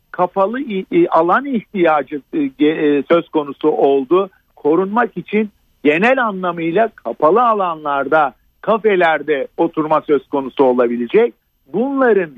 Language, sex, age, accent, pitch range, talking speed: Turkish, male, 50-69, native, 165-245 Hz, 85 wpm